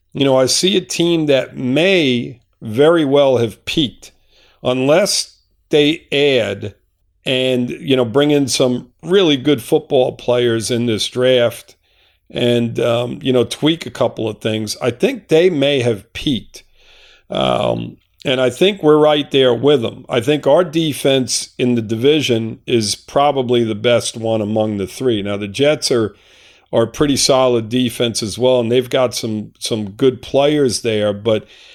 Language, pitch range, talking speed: English, 110-135 Hz, 165 wpm